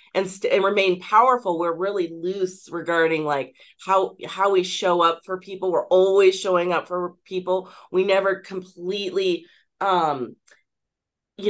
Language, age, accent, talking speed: English, 30-49, American, 145 wpm